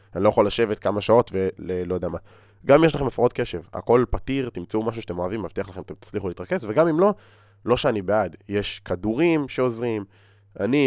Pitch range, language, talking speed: 90-105 Hz, Hebrew, 200 wpm